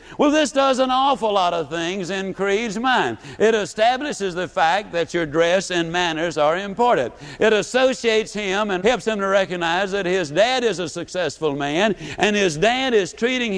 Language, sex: English, male